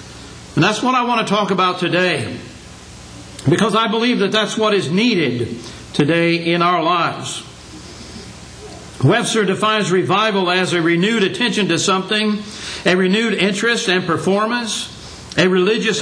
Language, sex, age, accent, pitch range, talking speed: English, male, 60-79, American, 180-225 Hz, 140 wpm